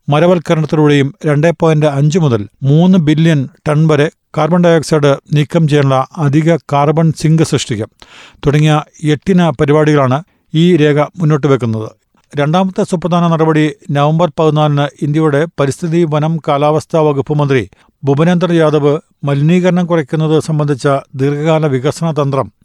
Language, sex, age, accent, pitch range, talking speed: Malayalam, male, 50-69, native, 145-165 Hz, 115 wpm